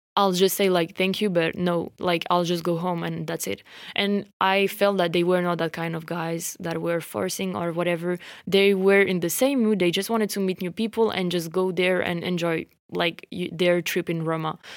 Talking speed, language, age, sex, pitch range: 230 wpm, English, 20-39, female, 170-195 Hz